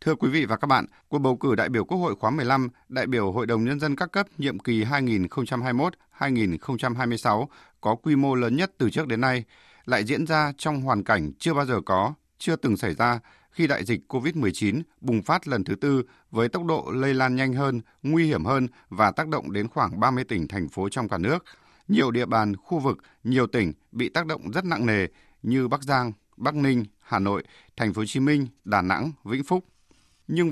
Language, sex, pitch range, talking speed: Vietnamese, male, 110-145 Hz, 215 wpm